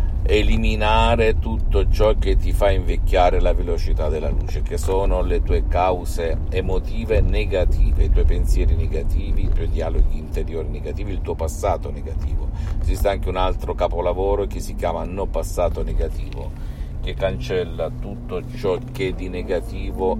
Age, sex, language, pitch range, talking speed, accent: 50-69, male, Italian, 80-95 Hz, 145 wpm, native